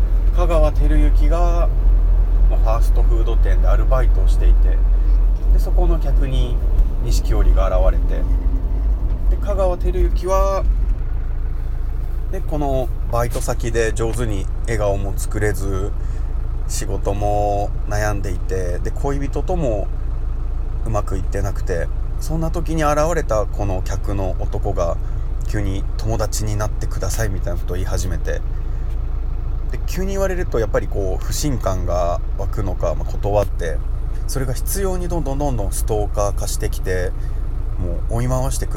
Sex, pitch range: male, 90-110 Hz